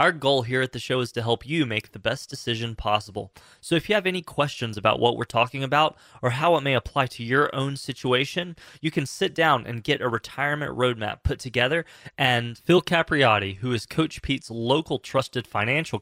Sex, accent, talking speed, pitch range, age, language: male, American, 210 wpm, 120-150 Hz, 20-39, English